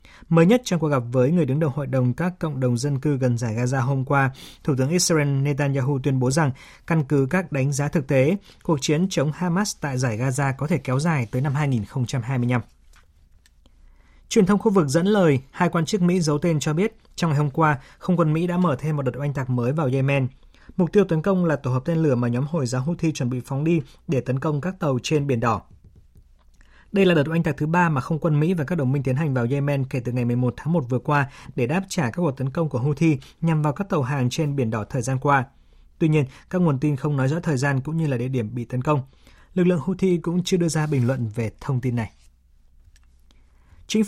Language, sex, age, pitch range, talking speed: Vietnamese, male, 20-39, 125-165 Hz, 255 wpm